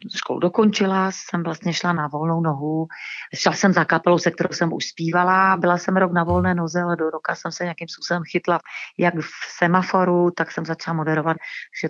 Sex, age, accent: female, 40-59, native